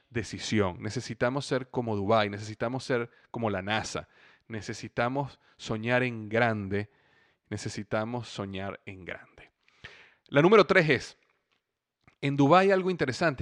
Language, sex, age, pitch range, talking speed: Spanish, male, 30-49, 115-150 Hz, 115 wpm